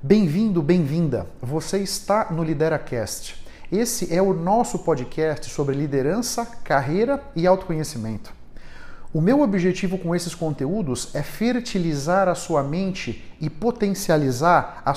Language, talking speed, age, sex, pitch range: Portuguese, 120 wpm, 50-69, male, 150-205 Hz